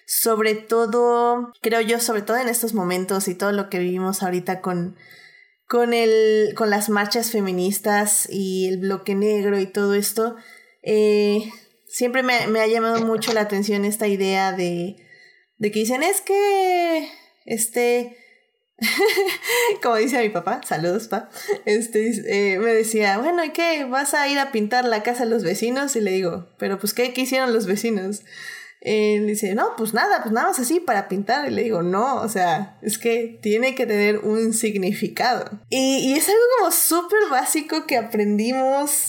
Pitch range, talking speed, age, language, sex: 205-260 Hz, 175 wpm, 20-39, Spanish, female